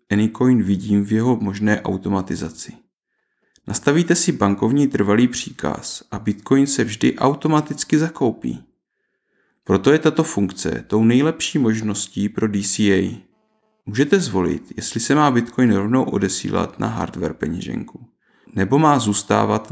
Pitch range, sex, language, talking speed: 105-130 Hz, male, Czech, 120 wpm